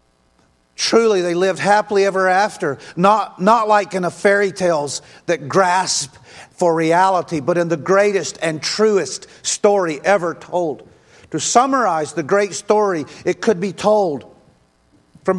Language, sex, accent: English, male, American